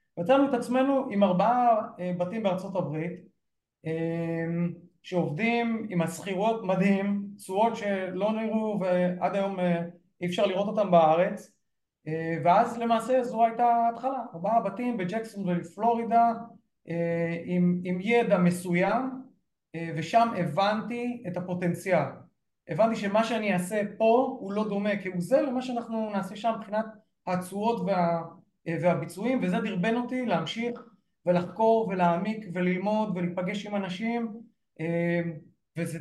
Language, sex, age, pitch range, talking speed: Hebrew, male, 30-49, 175-225 Hz, 115 wpm